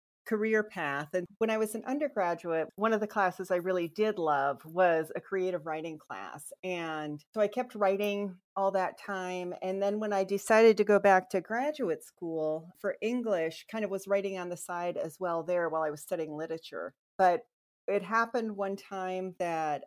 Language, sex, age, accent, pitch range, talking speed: English, female, 40-59, American, 165-220 Hz, 190 wpm